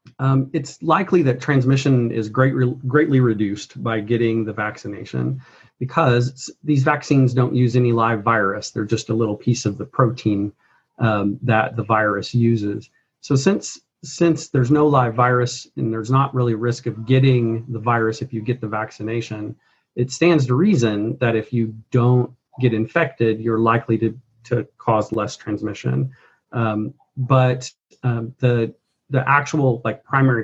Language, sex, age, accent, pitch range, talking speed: English, male, 40-59, American, 110-125 Hz, 160 wpm